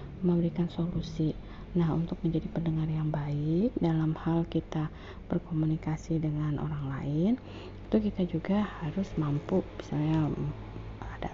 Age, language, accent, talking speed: 30-49, Indonesian, native, 115 wpm